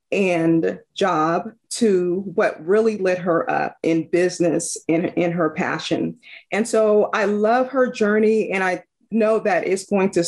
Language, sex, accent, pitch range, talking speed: English, female, American, 180-275 Hz, 160 wpm